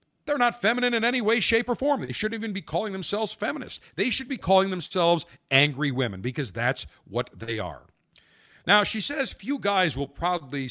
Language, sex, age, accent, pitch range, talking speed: English, male, 50-69, American, 130-200 Hz, 195 wpm